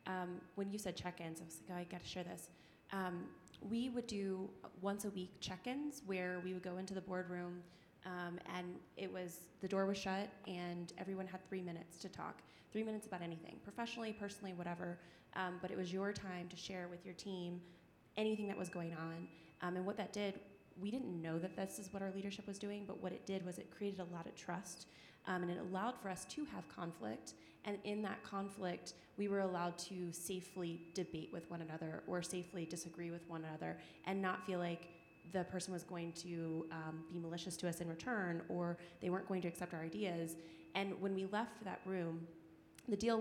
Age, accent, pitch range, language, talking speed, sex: 20-39, American, 170-195 Hz, English, 210 wpm, female